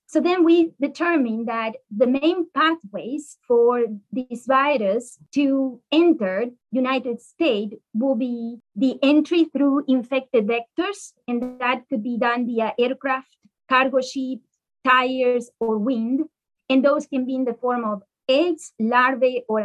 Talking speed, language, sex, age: 135 wpm, English, female, 30-49